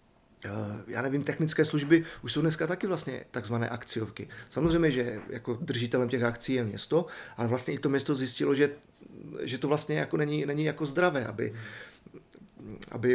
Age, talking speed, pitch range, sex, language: 30-49, 160 wpm, 125-145 Hz, male, Czech